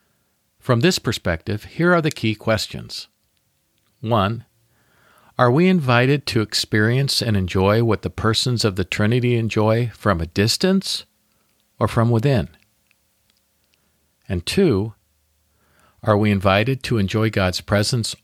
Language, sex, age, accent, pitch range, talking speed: English, male, 50-69, American, 105-150 Hz, 125 wpm